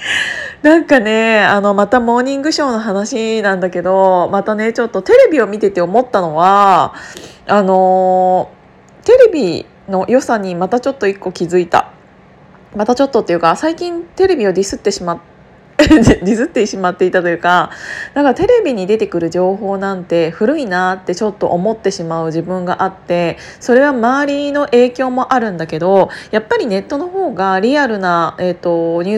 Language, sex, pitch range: Japanese, female, 180-245 Hz